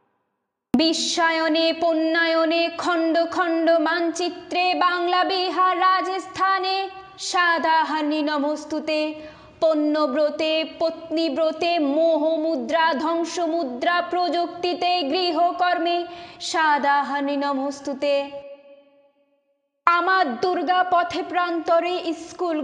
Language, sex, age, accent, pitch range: Bengali, female, 20-39, native, 305-370 Hz